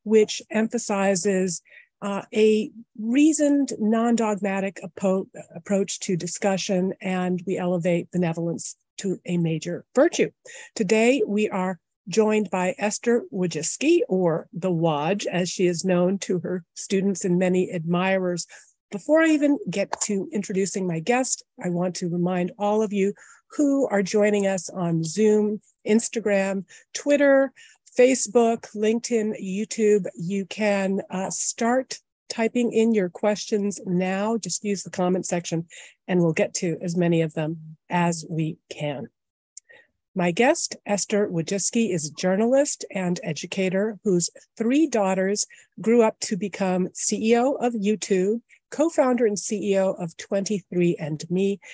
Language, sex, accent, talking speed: English, female, American, 130 wpm